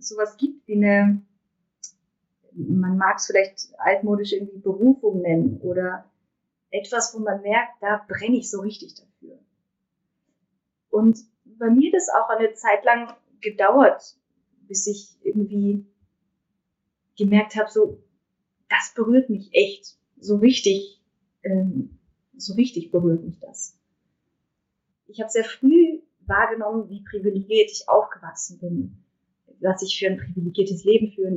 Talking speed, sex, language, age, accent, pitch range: 130 wpm, female, German, 30-49, German, 195-225 Hz